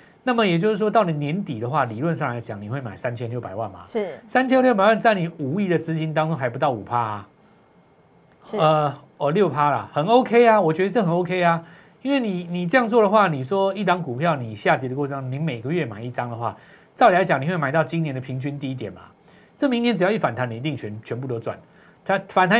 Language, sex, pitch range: Chinese, male, 125-185 Hz